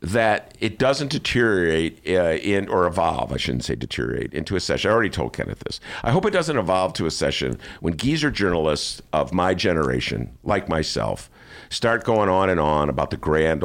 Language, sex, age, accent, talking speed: English, male, 50-69, American, 195 wpm